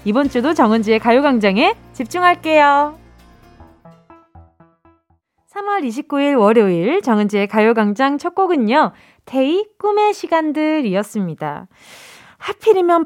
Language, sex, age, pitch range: Korean, female, 20-39, 220-340 Hz